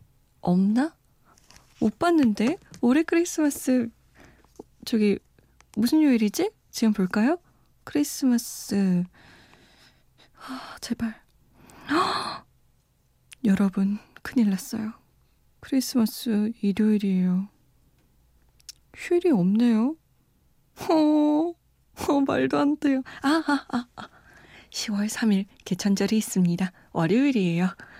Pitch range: 195-270 Hz